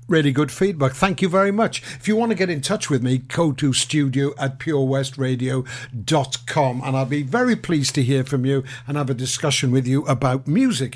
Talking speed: 210 wpm